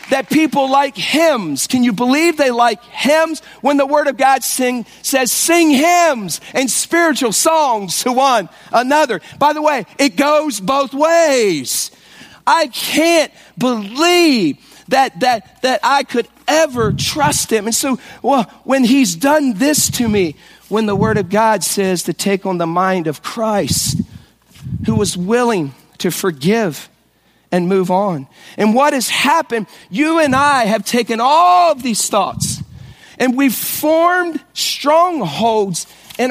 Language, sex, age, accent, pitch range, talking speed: English, male, 40-59, American, 205-290 Hz, 150 wpm